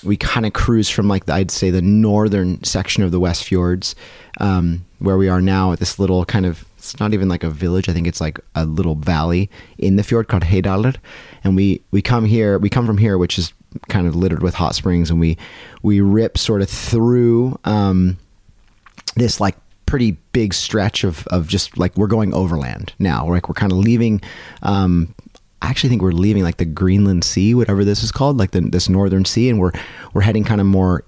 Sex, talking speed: male, 220 wpm